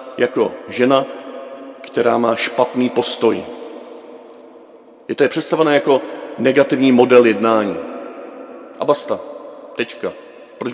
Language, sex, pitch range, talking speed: Czech, male, 120-145 Hz, 100 wpm